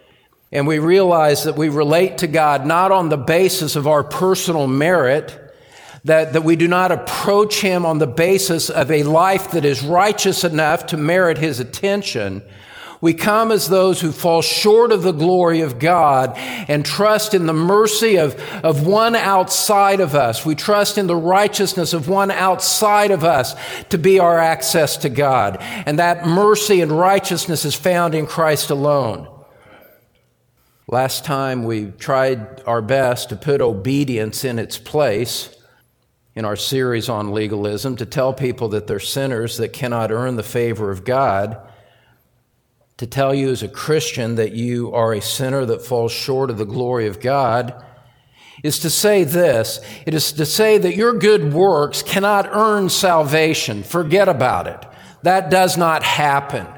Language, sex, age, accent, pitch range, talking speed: English, male, 50-69, American, 125-185 Hz, 165 wpm